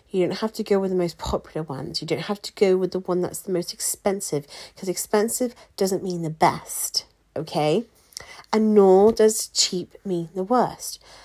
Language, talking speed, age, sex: English, 190 wpm, 30-49, female